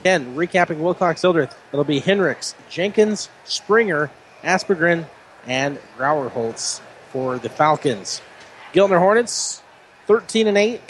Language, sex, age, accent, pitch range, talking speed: English, male, 30-49, American, 150-190 Hz, 95 wpm